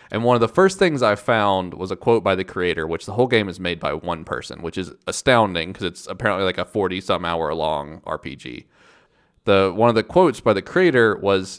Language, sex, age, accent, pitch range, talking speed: English, male, 30-49, American, 90-120 Hz, 230 wpm